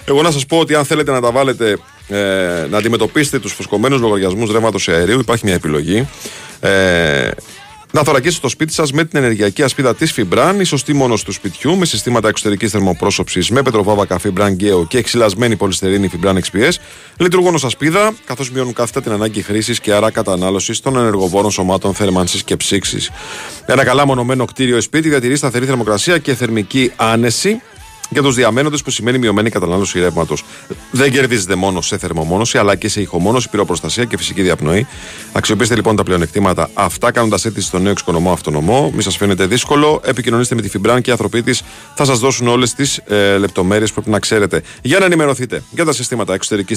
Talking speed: 180 wpm